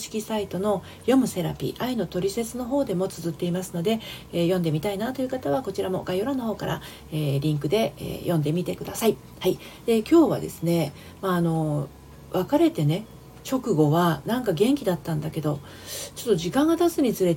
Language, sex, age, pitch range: Japanese, female, 40-59, 165-225 Hz